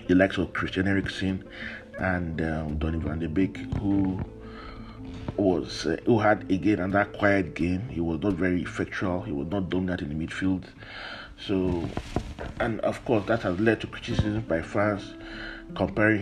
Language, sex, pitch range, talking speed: English, male, 95-110 Hz, 175 wpm